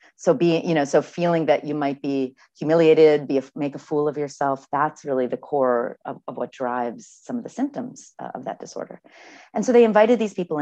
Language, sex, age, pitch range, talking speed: English, female, 40-59, 140-200 Hz, 220 wpm